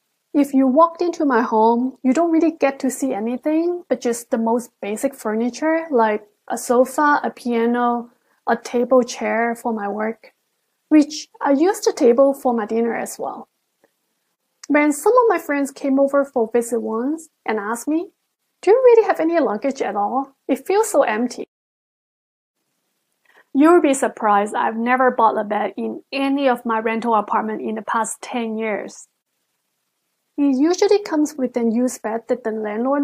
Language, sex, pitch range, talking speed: English, female, 230-285 Hz, 175 wpm